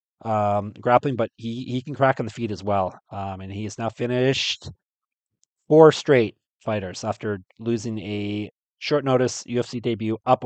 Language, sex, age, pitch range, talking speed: English, male, 30-49, 105-125 Hz, 165 wpm